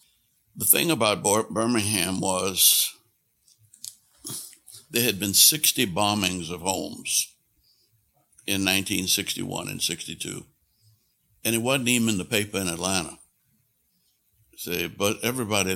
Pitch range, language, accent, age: 95-110 Hz, English, American, 60-79